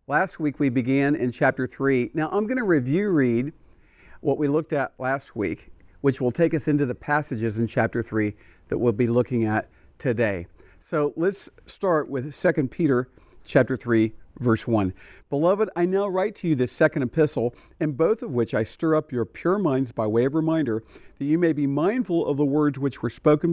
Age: 50-69